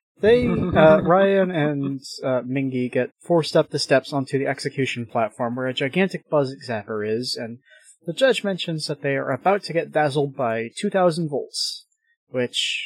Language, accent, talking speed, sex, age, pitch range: English, American, 170 wpm, male, 30-49, 130-170 Hz